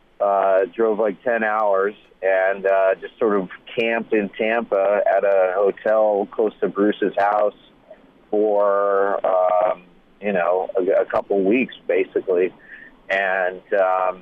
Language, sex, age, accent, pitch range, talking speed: English, male, 40-59, American, 100-110 Hz, 125 wpm